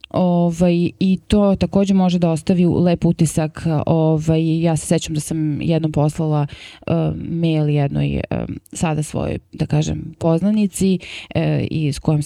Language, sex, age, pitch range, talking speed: English, female, 20-39, 155-175 Hz, 145 wpm